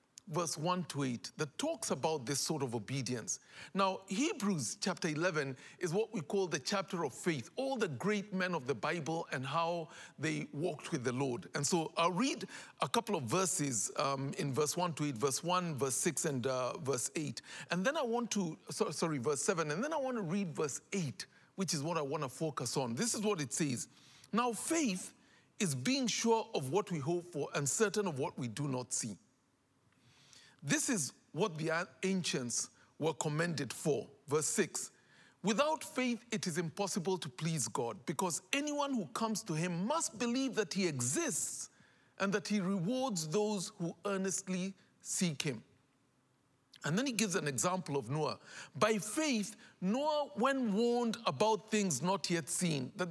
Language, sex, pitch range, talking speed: English, male, 150-210 Hz, 185 wpm